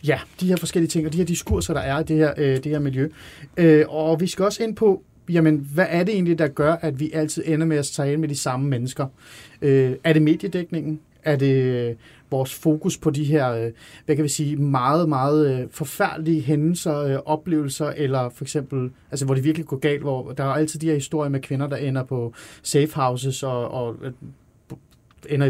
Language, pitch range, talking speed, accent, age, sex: Danish, 140-165 Hz, 200 wpm, native, 30-49, male